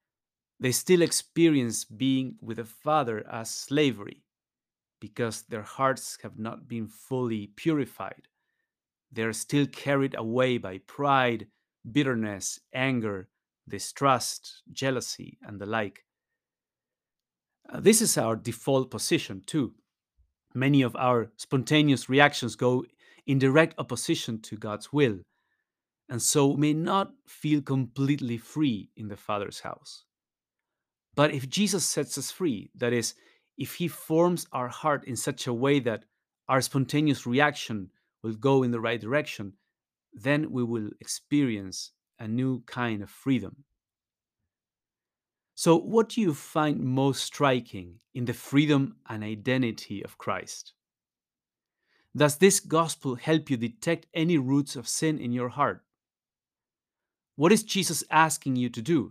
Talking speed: 130 wpm